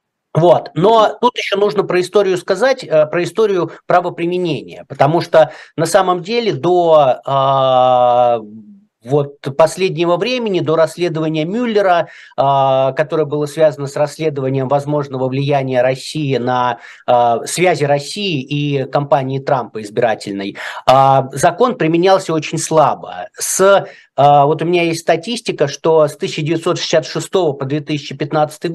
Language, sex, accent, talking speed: Russian, male, native, 120 wpm